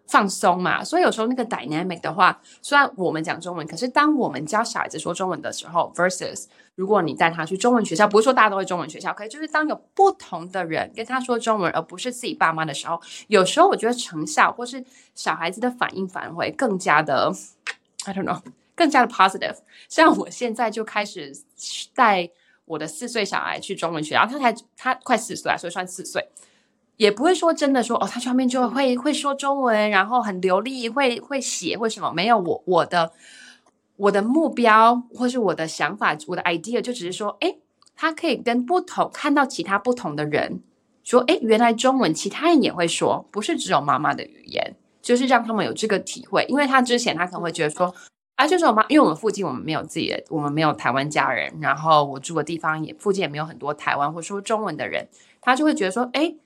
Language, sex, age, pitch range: English, female, 20-39, 175-255 Hz